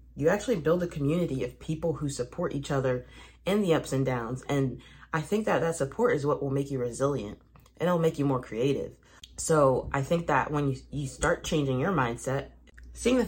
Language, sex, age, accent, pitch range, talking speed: English, female, 30-49, American, 125-150 Hz, 215 wpm